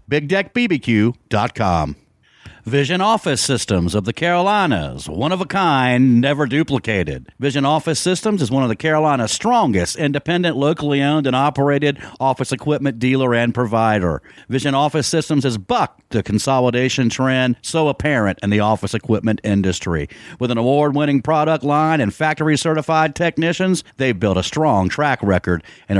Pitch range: 105-155 Hz